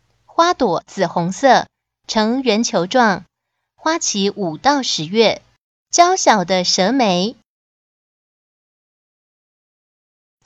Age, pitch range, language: 20-39, 185-260 Hz, Chinese